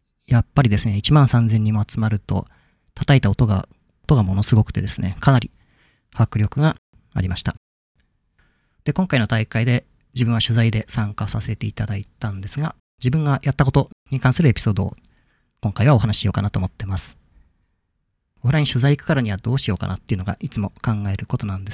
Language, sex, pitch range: Japanese, male, 100-135 Hz